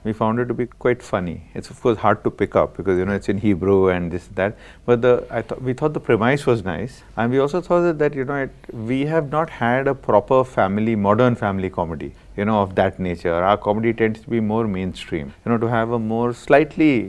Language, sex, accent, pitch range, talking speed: English, male, Indian, 105-135 Hz, 255 wpm